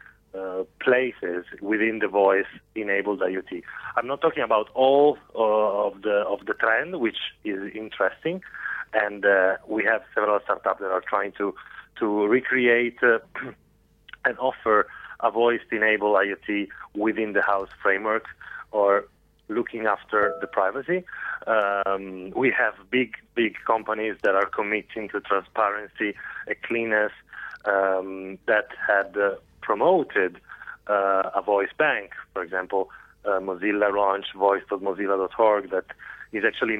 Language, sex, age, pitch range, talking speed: English, male, 30-49, 100-115 Hz, 125 wpm